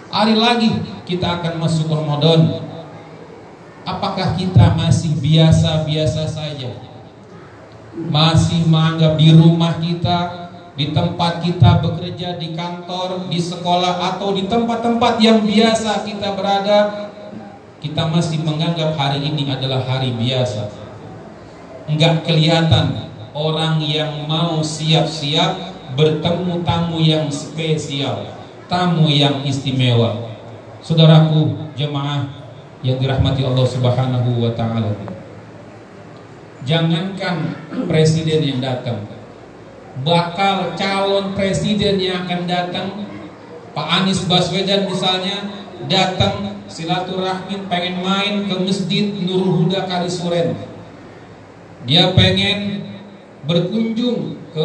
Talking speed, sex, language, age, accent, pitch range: 95 wpm, male, Indonesian, 40-59, native, 145-185 Hz